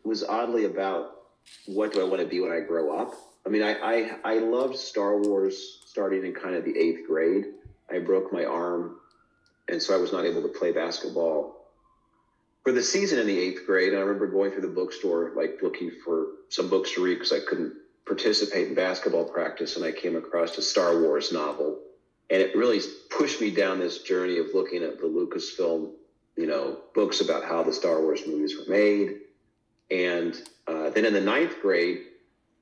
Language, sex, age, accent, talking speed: English, male, 40-59, American, 195 wpm